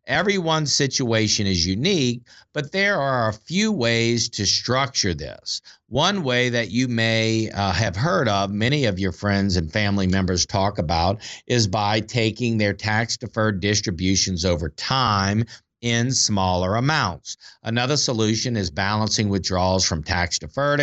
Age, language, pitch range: 50-69, English, 95-125 Hz